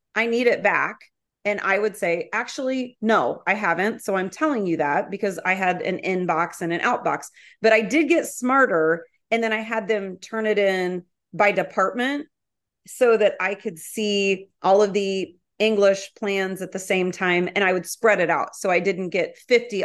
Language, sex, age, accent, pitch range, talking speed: English, female, 30-49, American, 190-245 Hz, 195 wpm